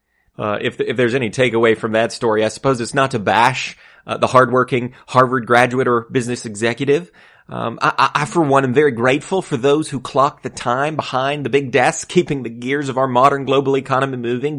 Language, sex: English, male